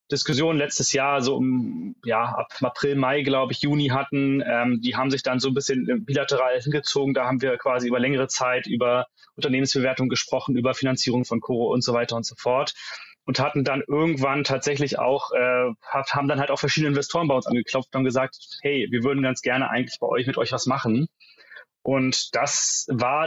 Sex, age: male, 20-39